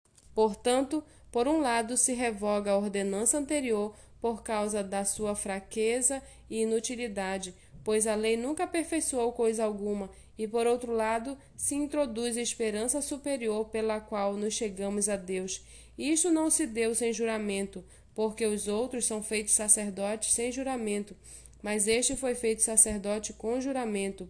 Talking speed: 145 wpm